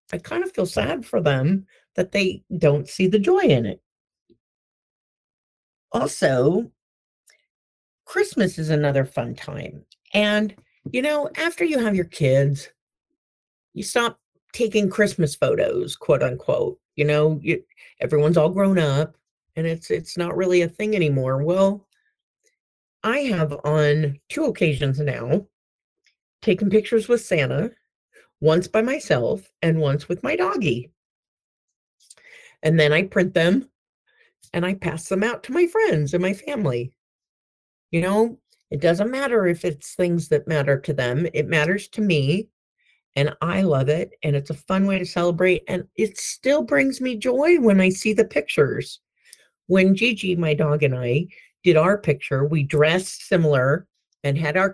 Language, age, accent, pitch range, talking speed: English, 50-69, American, 150-215 Hz, 150 wpm